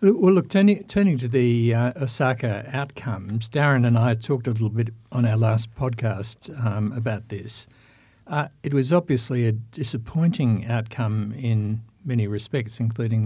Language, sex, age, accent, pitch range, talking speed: English, male, 60-79, Australian, 110-125 Hz, 155 wpm